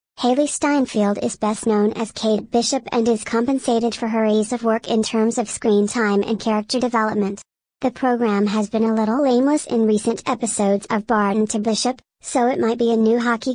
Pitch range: 215-245 Hz